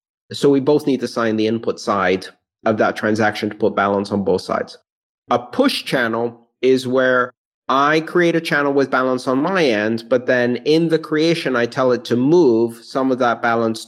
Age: 30-49